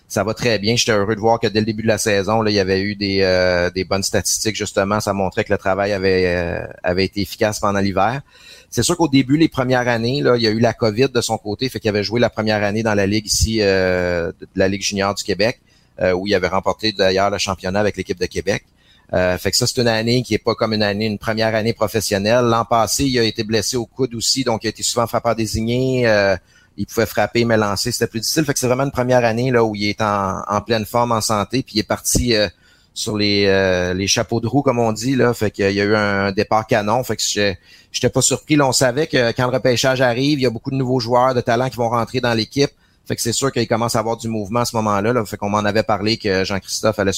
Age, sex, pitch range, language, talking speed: 30-49, male, 100-120 Hz, French, 270 wpm